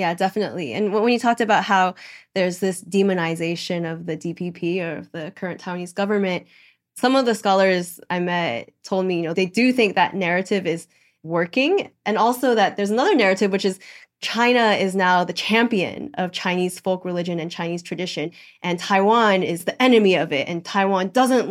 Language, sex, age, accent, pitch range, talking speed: English, female, 10-29, American, 175-210 Hz, 185 wpm